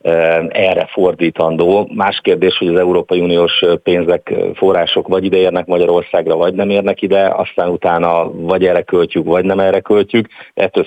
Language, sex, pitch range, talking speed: Hungarian, male, 85-100 Hz, 150 wpm